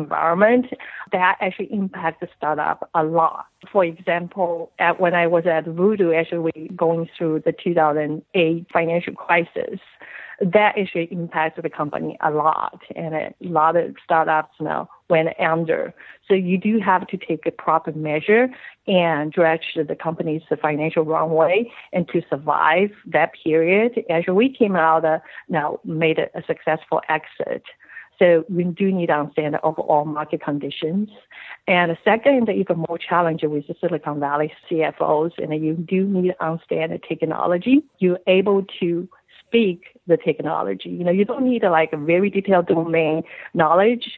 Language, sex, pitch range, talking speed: English, female, 155-185 Hz, 160 wpm